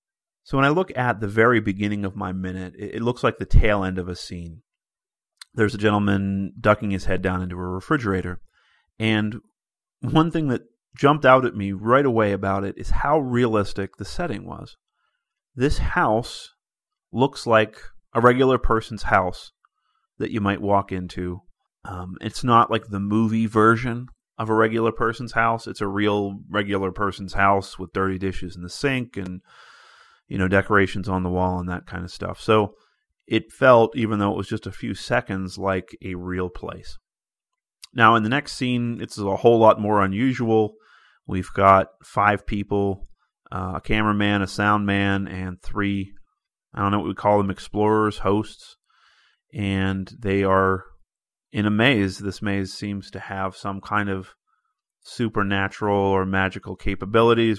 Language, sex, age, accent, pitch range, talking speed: English, male, 30-49, American, 95-110 Hz, 170 wpm